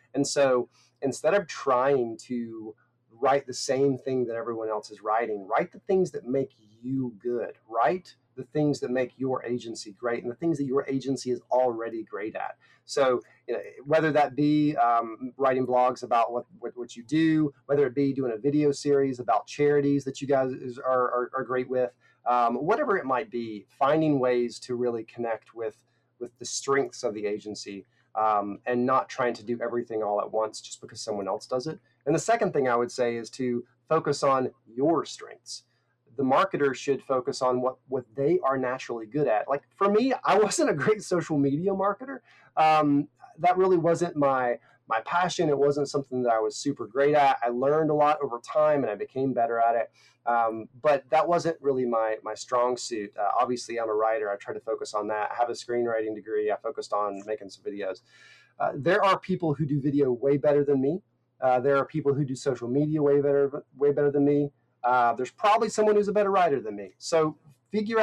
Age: 30-49